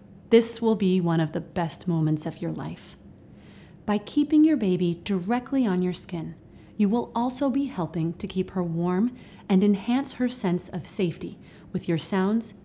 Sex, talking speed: female, 175 wpm